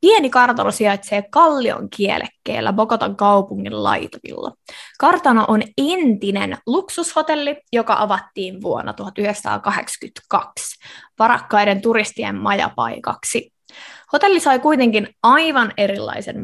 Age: 20-39